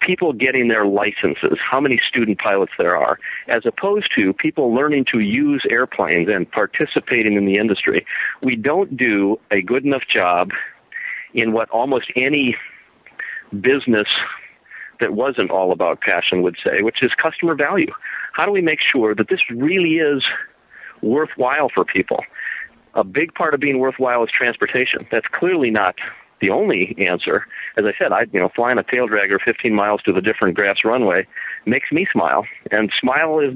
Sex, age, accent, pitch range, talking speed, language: male, 50-69, American, 110-180 Hz, 170 wpm, English